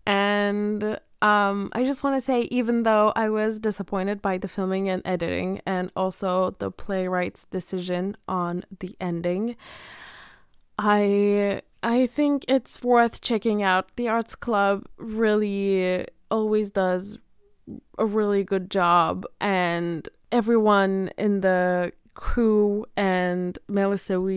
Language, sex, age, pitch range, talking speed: English, female, 20-39, 190-235 Hz, 120 wpm